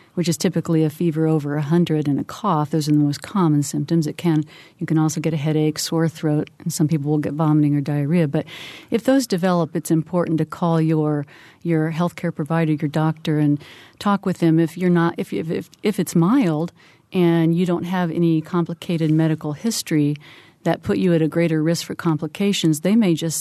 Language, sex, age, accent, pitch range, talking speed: English, female, 50-69, American, 155-170 Hz, 210 wpm